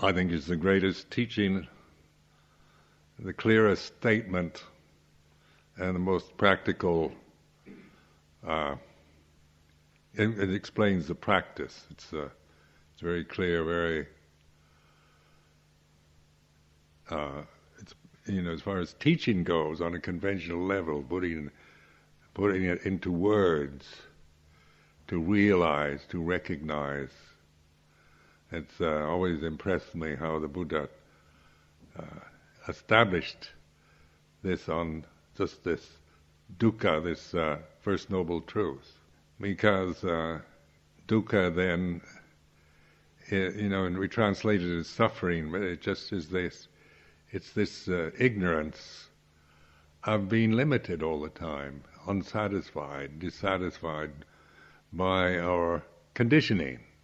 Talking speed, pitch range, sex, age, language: 105 wpm, 75-95 Hz, male, 60-79, English